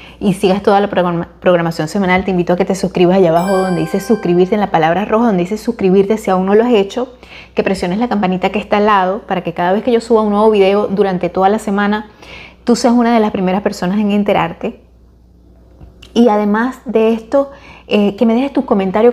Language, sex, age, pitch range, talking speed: Spanish, female, 20-39, 175-215 Hz, 225 wpm